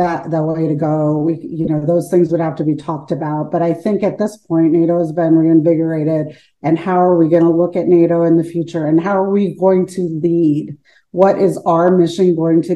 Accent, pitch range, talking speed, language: American, 165-200 Hz, 230 wpm, English